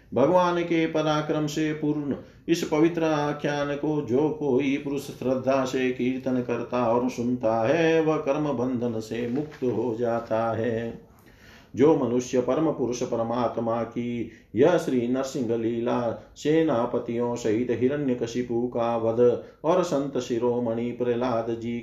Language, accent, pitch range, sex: Hindi, native, 120-145 Hz, male